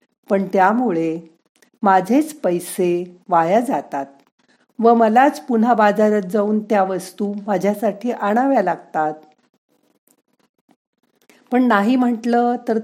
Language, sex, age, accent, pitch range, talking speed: Marathi, female, 50-69, native, 180-240 Hz, 100 wpm